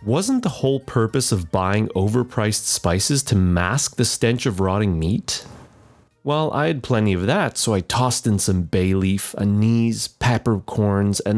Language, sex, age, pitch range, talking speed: English, male, 30-49, 95-130 Hz, 165 wpm